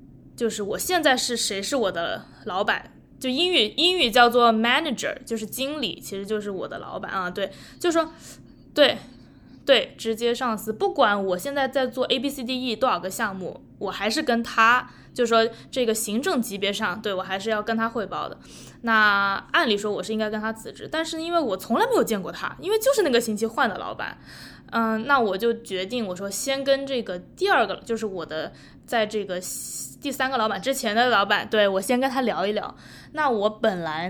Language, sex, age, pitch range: Chinese, female, 20-39, 200-260 Hz